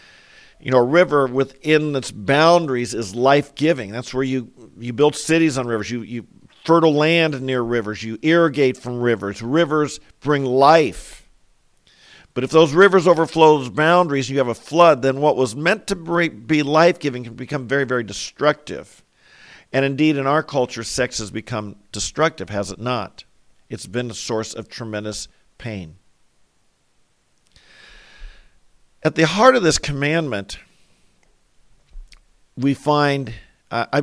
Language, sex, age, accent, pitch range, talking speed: English, male, 50-69, American, 115-150 Hz, 145 wpm